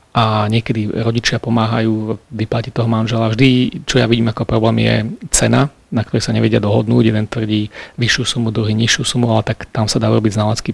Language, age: Slovak, 40-59